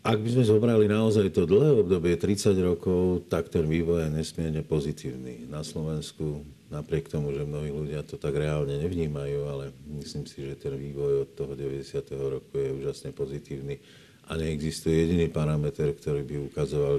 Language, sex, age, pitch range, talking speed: Slovak, male, 50-69, 75-90 Hz, 165 wpm